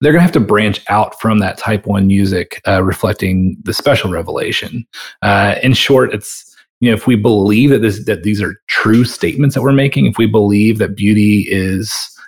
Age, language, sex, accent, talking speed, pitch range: 30-49, English, male, American, 205 wpm, 100-115 Hz